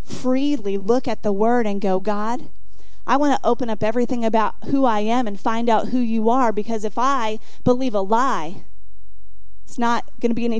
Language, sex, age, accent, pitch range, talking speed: English, female, 30-49, American, 220-270 Hz, 205 wpm